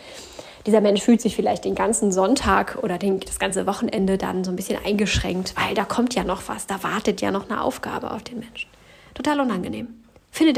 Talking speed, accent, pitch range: 200 wpm, German, 200-260 Hz